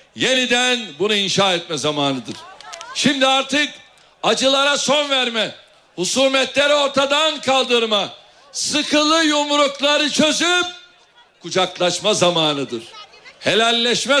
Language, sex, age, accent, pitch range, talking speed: Turkish, male, 60-79, native, 215-280 Hz, 80 wpm